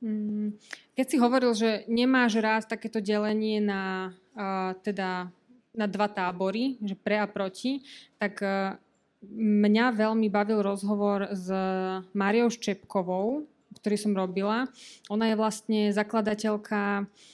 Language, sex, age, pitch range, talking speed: Slovak, female, 20-39, 205-220 Hz, 110 wpm